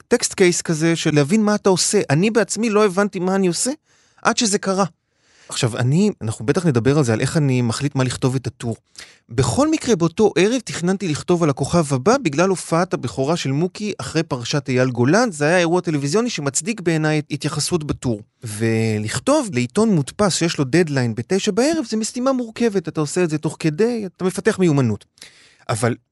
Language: Hebrew